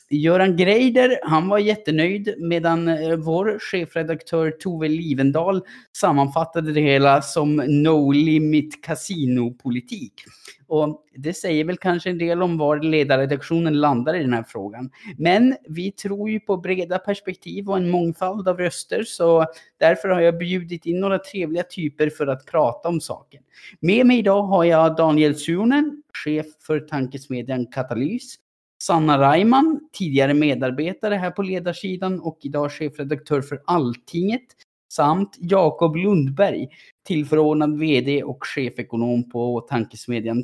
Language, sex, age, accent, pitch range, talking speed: Swedish, male, 30-49, Norwegian, 145-190 Hz, 130 wpm